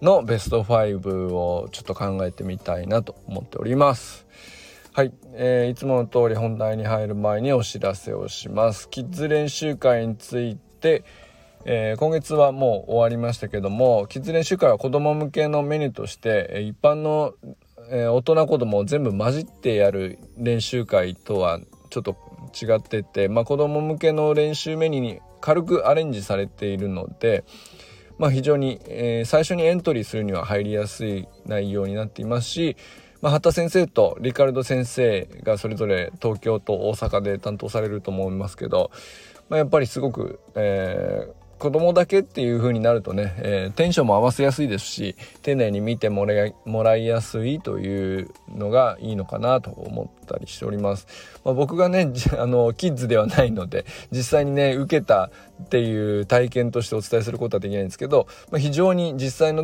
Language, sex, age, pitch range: Japanese, male, 20-39, 105-140 Hz